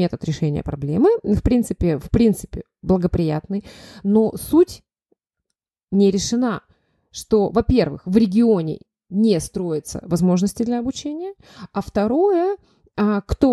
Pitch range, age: 185-245 Hz, 20-39